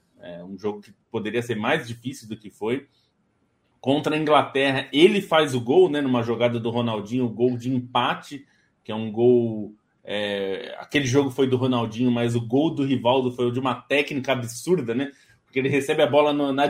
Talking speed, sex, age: 185 wpm, male, 20-39